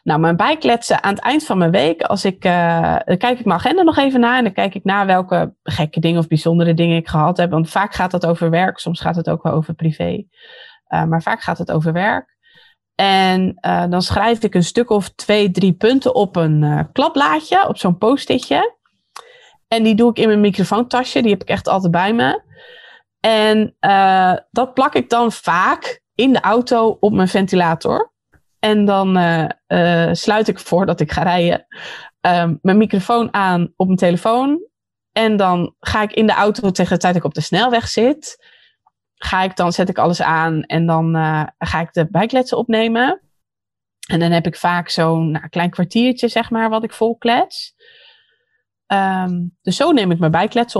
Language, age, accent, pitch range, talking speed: Dutch, 20-39, Dutch, 170-225 Hz, 200 wpm